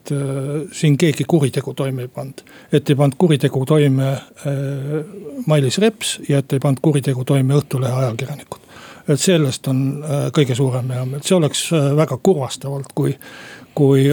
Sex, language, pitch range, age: male, Finnish, 140-160 Hz, 60-79